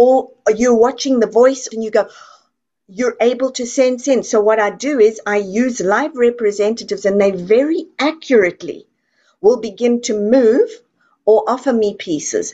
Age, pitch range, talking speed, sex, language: 50-69, 205-255 Hz, 165 wpm, female, English